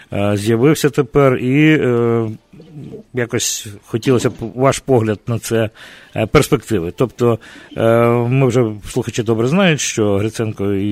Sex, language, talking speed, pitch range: male, English, 120 wpm, 110-130 Hz